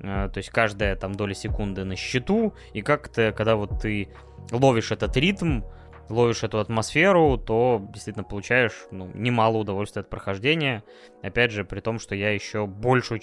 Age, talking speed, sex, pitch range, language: 20-39, 160 wpm, male, 100-125 Hz, Russian